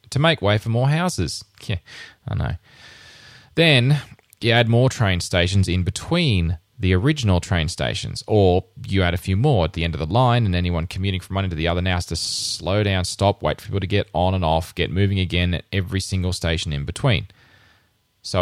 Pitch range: 95-120 Hz